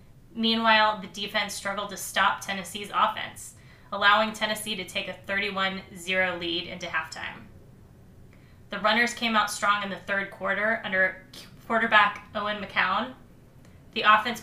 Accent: American